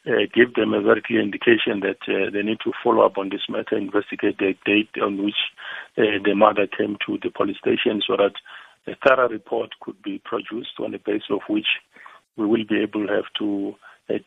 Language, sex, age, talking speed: English, male, 50-69, 215 wpm